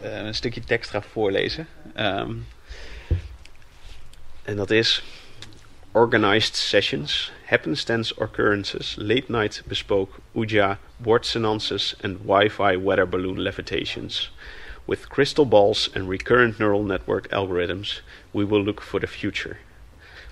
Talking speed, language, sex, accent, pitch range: 115 wpm, Dutch, male, Dutch, 90-105 Hz